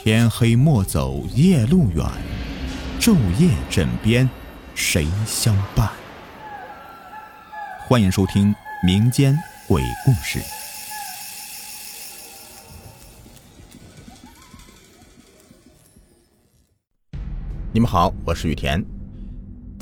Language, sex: Chinese, male